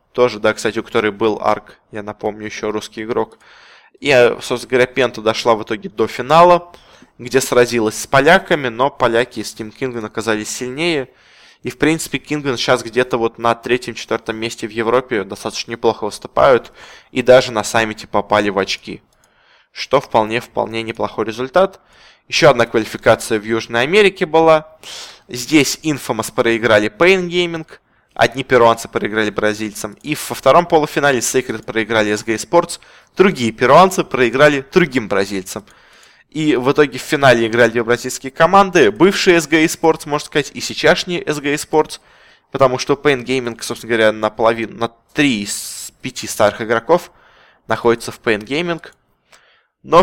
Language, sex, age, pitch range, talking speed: Russian, male, 20-39, 110-150 Hz, 145 wpm